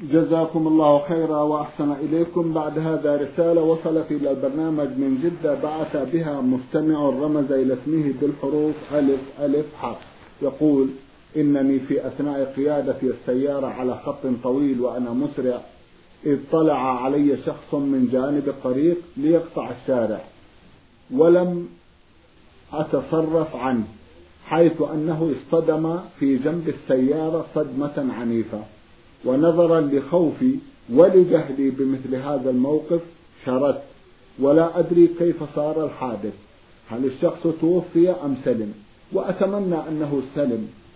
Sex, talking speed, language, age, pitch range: male, 105 wpm, Arabic, 50-69, 135-165 Hz